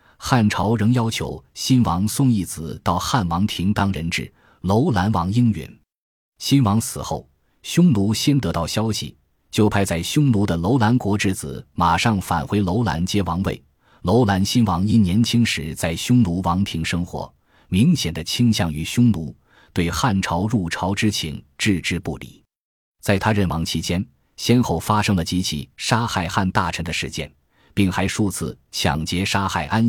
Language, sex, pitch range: Chinese, male, 85-115 Hz